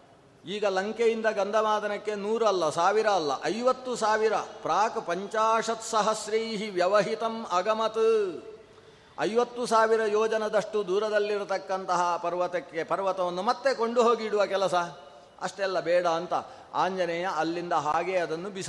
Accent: native